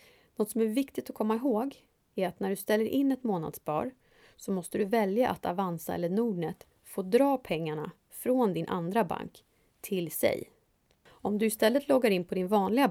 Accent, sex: Swedish, female